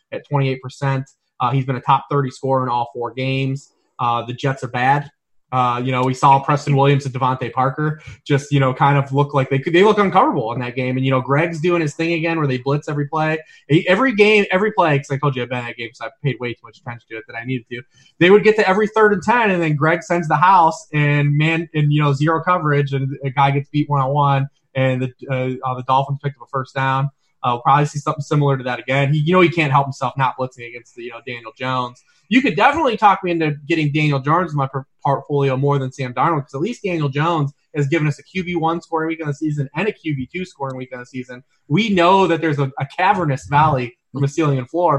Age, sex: 20-39, male